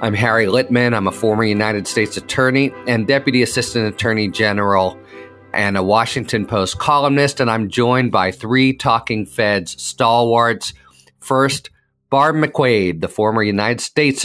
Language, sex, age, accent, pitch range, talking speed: English, male, 40-59, American, 110-140 Hz, 145 wpm